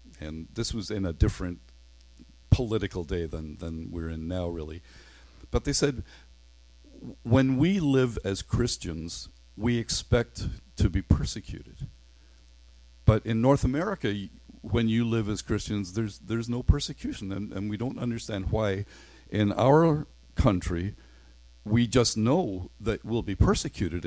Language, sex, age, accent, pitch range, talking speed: English, male, 50-69, American, 80-115 Hz, 140 wpm